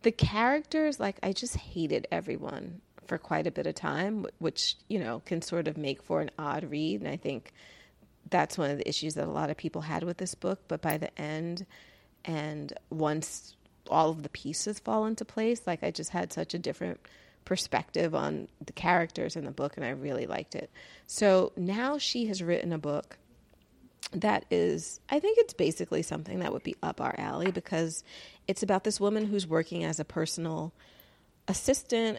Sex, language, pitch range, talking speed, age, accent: female, English, 155-195 Hz, 195 wpm, 30-49, American